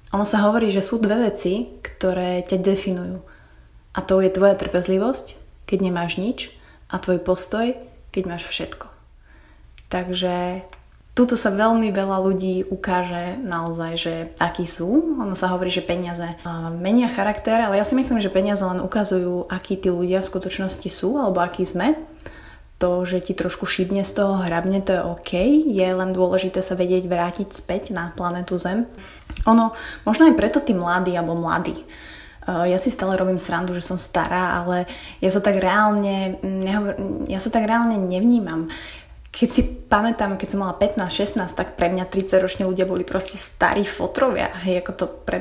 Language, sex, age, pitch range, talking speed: Slovak, female, 20-39, 180-210 Hz, 170 wpm